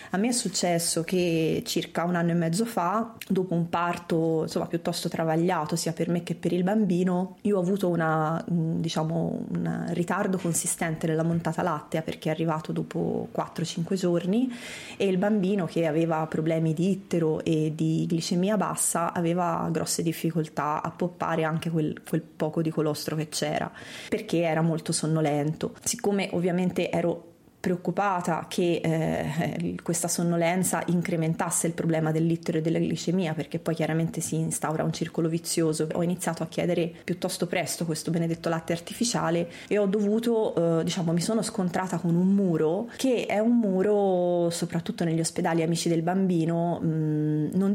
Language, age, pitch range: Italian, 20-39, 160-185 Hz